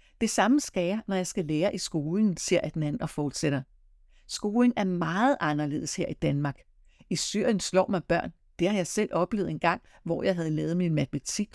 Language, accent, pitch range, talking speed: Danish, native, 155-195 Hz, 195 wpm